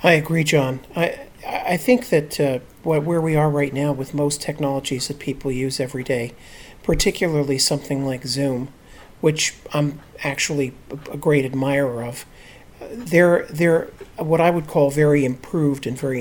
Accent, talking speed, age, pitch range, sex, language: American, 160 wpm, 50-69, 130-150 Hz, male, English